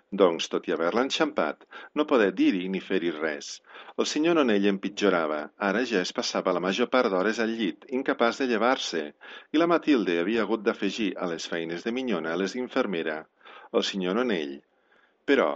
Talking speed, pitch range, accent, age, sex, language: 175 wpm, 95-130 Hz, Italian, 50-69, male, Spanish